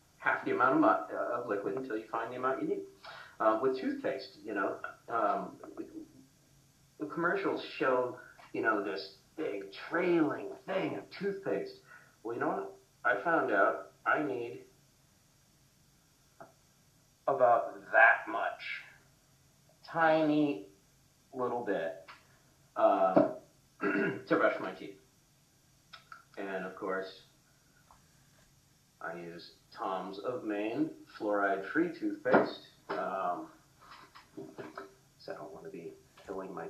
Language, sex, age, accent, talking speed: English, male, 50-69, American, 120 wpm